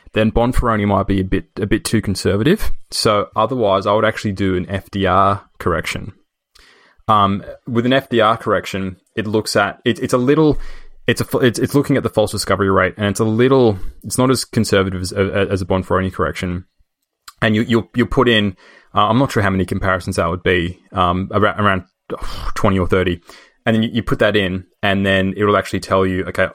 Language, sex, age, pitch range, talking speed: English, male, 20-39, 95-110 Hz, 210 wpm